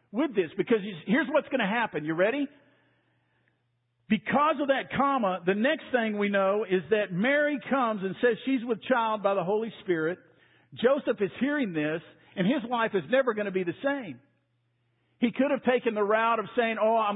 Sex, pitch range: male, 180-235 Hz